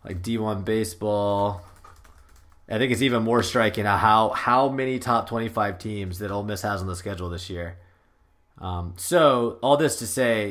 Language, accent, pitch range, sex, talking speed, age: English, American, 100-120 Hz, male, 170 wpm, 20-39